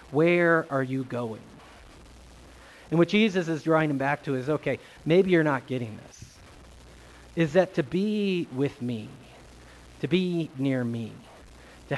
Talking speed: 150 wpm